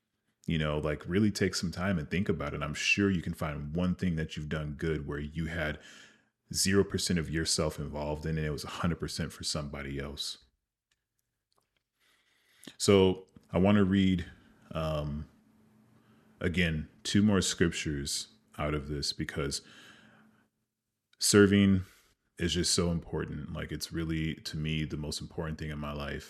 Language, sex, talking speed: English, male, 165 wpm